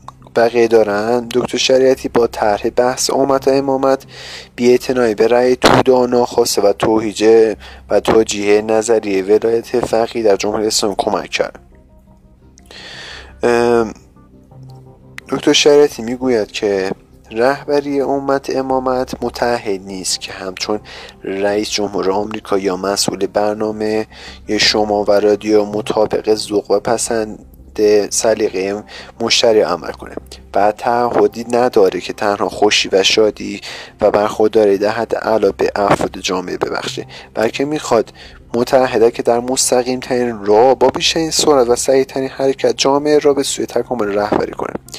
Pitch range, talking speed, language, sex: 100-125 Hz, 120 wpm, Persian, male